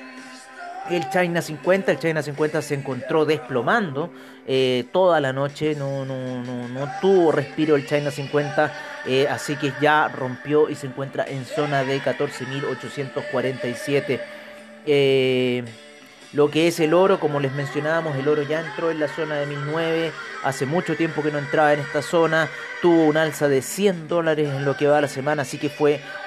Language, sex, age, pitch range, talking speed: Spanish, male, 30-49, 135-160 Hz, 165 wpm